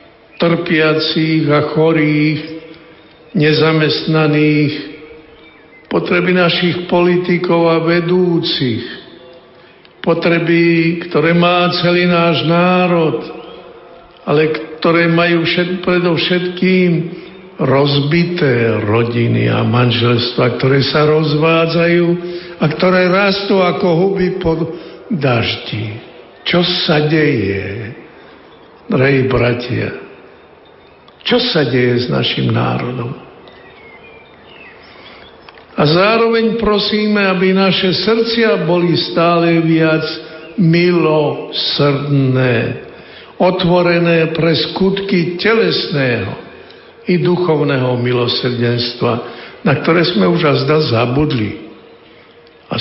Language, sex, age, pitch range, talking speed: Slovak, male, 60-79, 140-175 Hz, 80 wpm